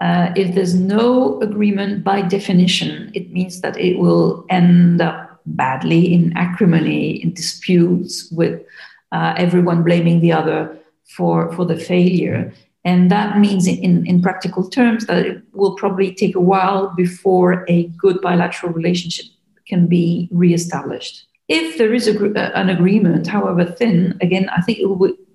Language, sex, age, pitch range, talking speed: English, female, 50-69, 175-205 Hz, 150 wpm